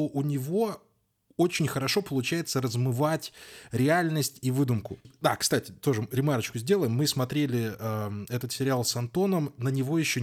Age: 20-39